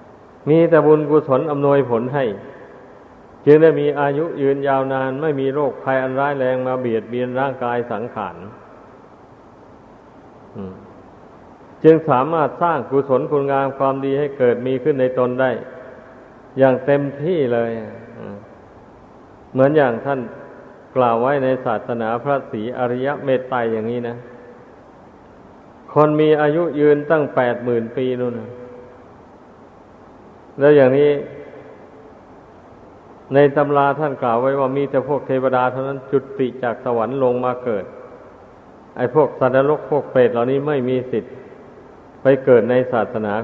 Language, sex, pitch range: Thai, male, 120-140 Hz